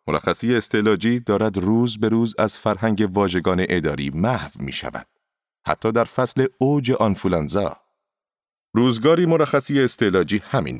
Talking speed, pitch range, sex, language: 120 wpm, 95-125 Hz, male, Persian